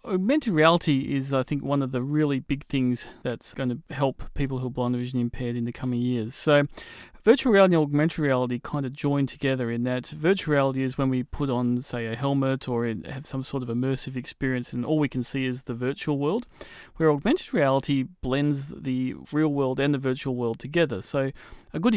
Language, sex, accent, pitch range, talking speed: English, male, Australian, 125-150 Hz, 215 wpm